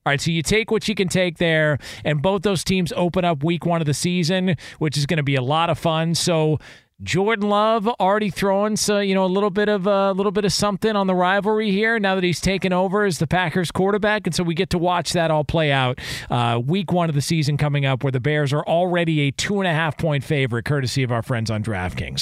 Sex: male